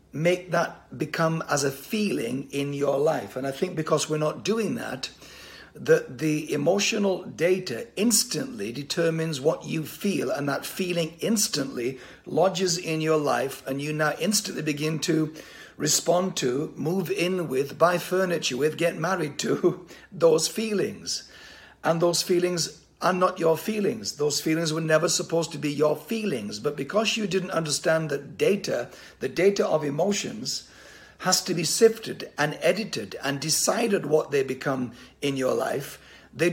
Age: 60-79